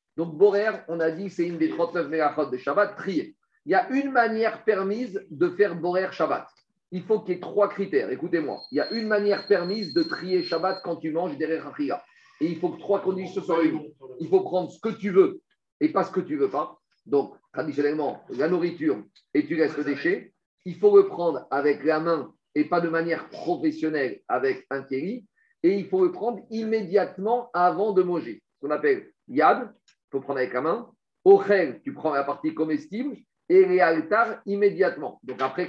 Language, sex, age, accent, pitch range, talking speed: French, male, 50-69, French, 155-210 Hz, 200 wpm